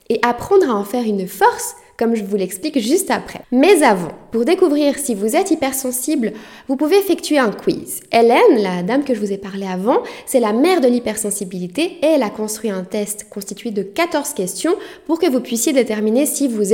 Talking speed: 205 wpm